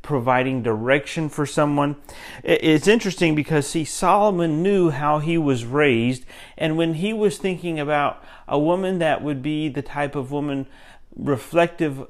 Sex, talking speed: male, 150 wpm